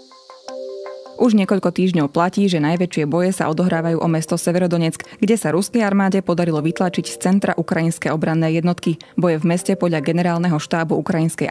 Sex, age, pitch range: female, 20-39, 160-190 Hz